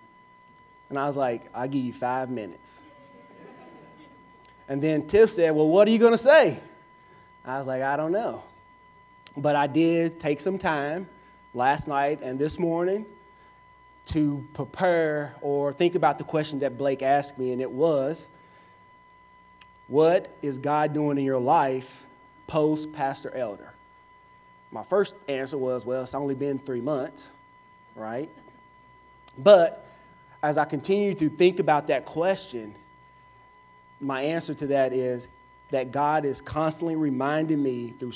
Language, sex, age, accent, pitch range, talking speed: English, male, 30-49, American, 135-170 Hz, 145 wpm